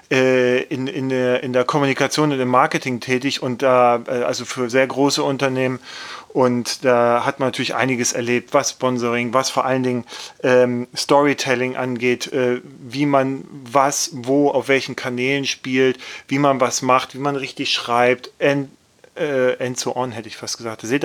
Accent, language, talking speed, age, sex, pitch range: German, German, 170 wpm, 30-49, male, 120-140 Hz